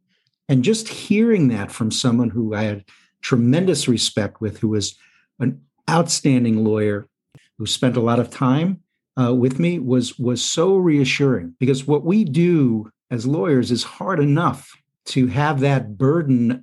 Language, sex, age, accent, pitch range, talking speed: English, male, 50-69, American, 115-140 Hz, 155 wpm